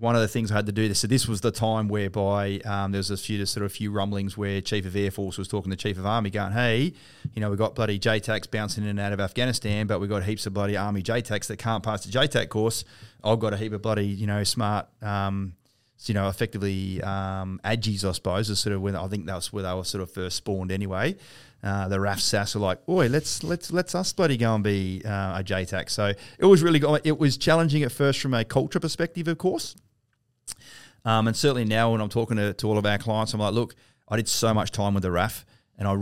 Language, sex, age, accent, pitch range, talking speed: English, male, 30-49, Australian, 100-115 Hz, 260 wpm